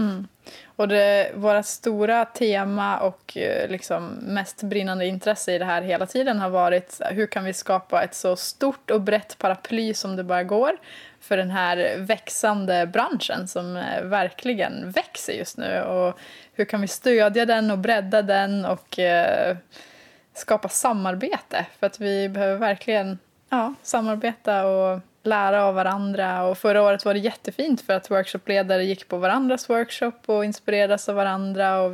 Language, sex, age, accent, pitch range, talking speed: Swedish, female, 20-39, native, 190-225 Hz, 160 wpm